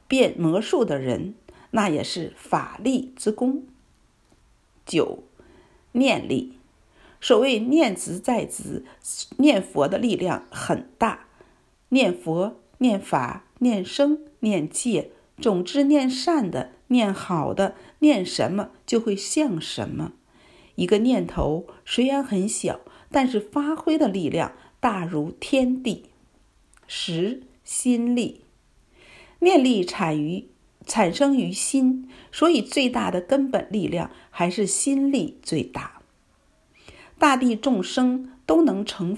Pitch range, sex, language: 195-275 Hz, female, Chinese